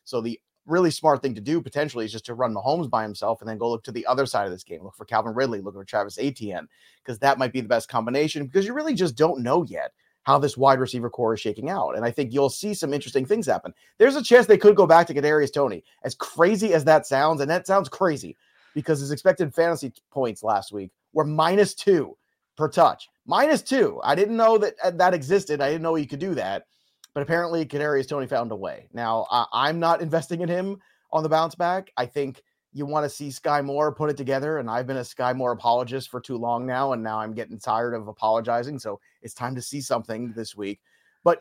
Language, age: English, 30-49